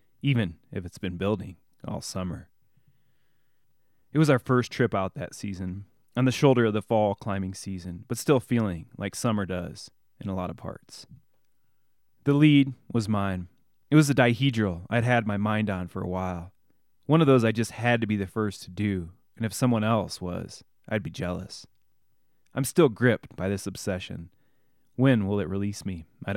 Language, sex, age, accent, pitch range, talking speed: English, male, 30-49, American, 95-130 Hz, 185 wpm